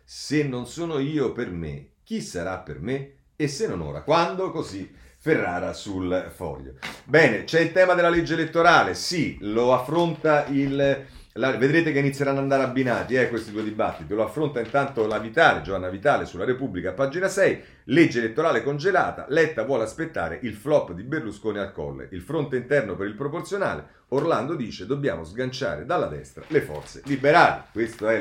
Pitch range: 110-150 Hz